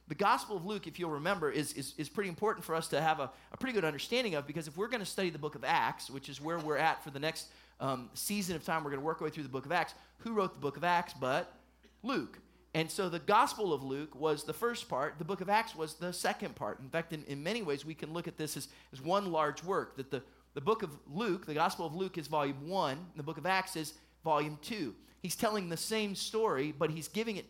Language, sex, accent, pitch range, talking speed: English, male, American, 155-205 Hz, 275 wpm